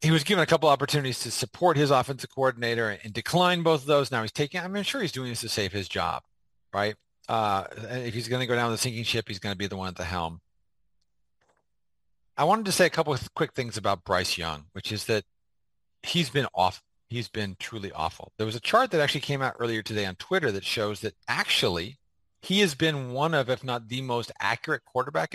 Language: English